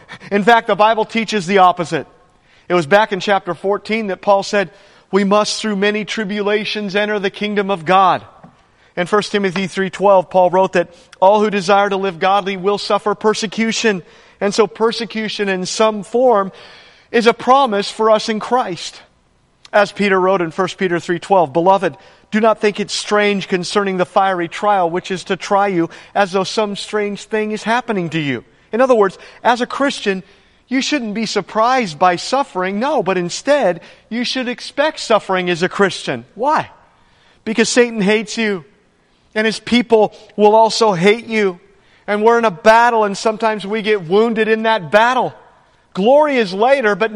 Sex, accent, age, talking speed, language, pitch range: male, American, 40-59, 175 wpm, English, 195-225 Hz